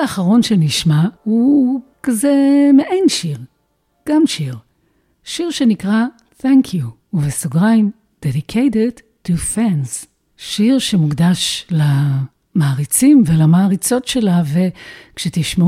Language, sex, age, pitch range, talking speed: Hebrew, female, 50-69, 170-235 Hz, 85 wpm